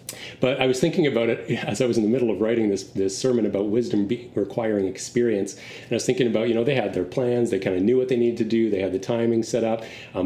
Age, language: 30-49, English